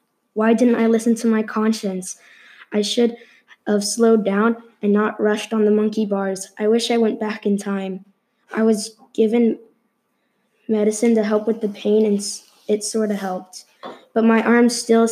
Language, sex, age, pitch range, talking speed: English, female, 10-29, 205-230 Hz, 175 wpm